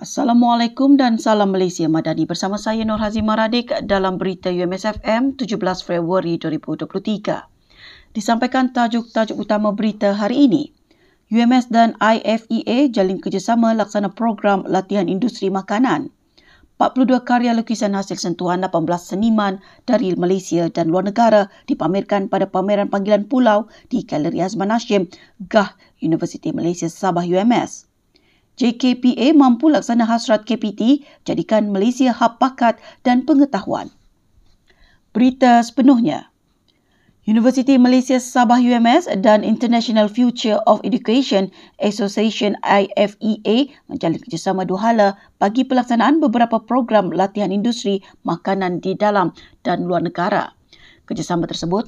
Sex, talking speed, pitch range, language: female, 115 wpm, 190-240 Hz, Malay